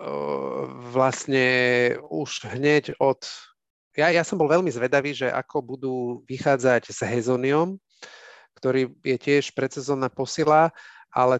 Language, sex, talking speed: Slovak, male, 115 wpm